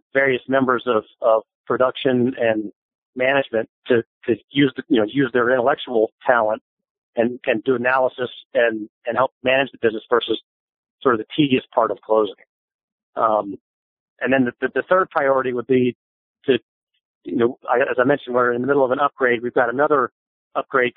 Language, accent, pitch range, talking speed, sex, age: English, American, 120-140 Hz, 180 wpm, male, 40-59